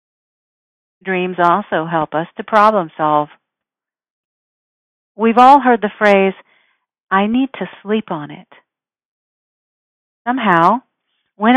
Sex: female